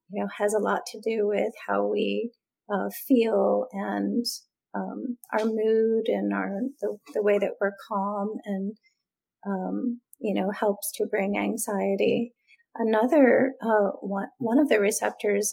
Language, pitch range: English, 200-240 Hz